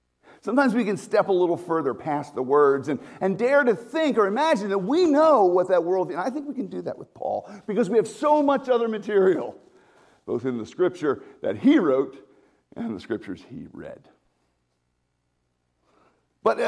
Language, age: English, 50-69